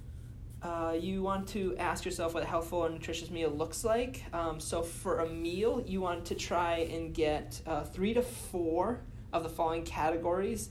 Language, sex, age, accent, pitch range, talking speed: English, male, 20-39, American, 145-170 Hz, 185 wpm